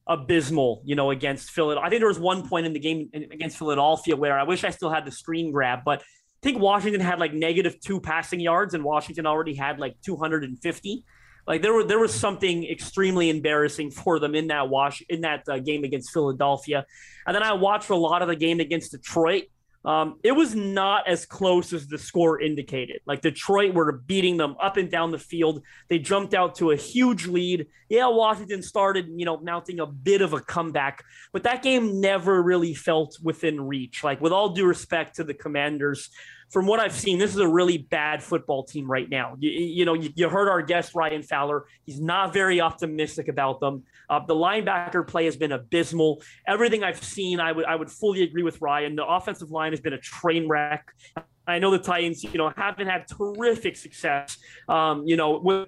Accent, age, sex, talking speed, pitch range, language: American, 30-49, male, 210 wpm, 150-185 Hz, English